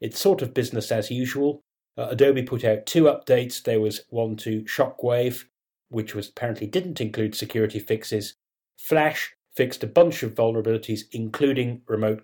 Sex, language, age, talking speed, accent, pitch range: male, English, 30-49, 150 wpm, British, 110-135 Hz